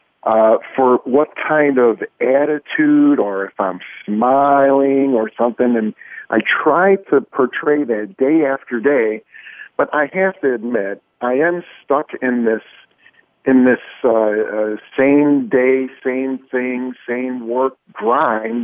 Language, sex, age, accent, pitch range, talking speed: English, male, 50-69, American, 115-145 Hz, 135 wpm